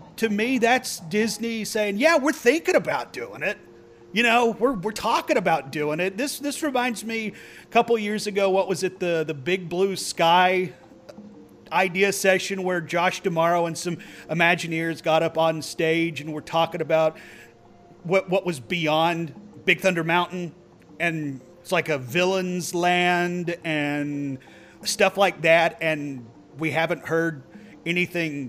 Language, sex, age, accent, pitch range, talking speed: English, male, 40-59, American, 165-220 Hz, 155 wpm